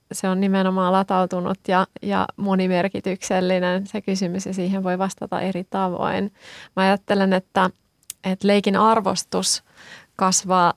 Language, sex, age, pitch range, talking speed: Finnish, female, 30-49, 185-200 Hz, 125 wpm